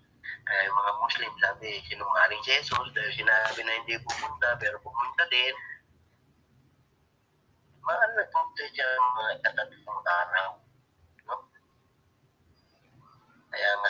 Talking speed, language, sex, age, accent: 110 wpm, English, male, 30-49, Filipino